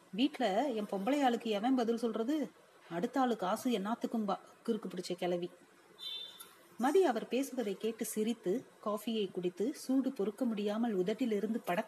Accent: native